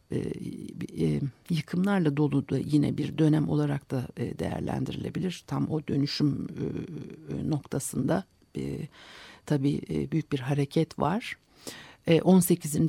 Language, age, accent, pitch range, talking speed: Turkish, 60-79, native, 135-160 Hz, 120 wpm